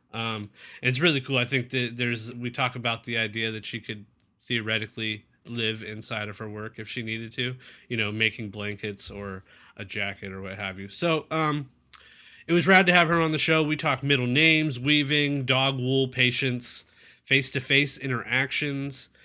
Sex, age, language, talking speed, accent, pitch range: male, 30-49, English, 185 wpm, American, 120-155 Hz